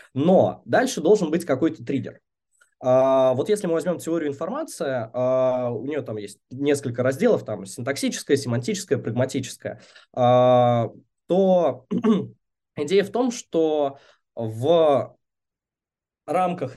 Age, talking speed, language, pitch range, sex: 20-39, 105 wpm, Russian, 135-195 Hz, male